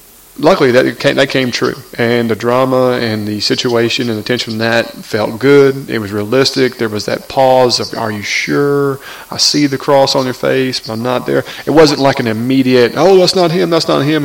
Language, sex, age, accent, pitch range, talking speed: English, male, 30-49, American, 115-130 Hz, 225 wpm